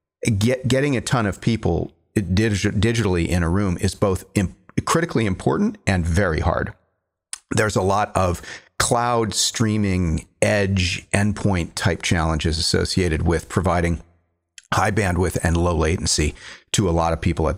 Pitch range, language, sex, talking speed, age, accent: 85-105 Hz, English, male, 145 wpm, 40-59, American